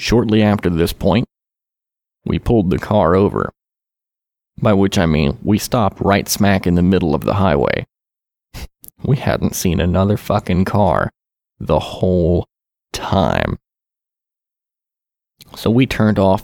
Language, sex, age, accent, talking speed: English, male, 30-49, American, 130 wpm